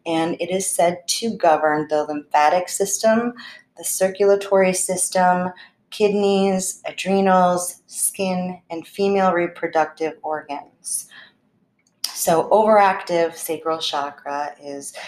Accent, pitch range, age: American, 160-190 Hz, 30-49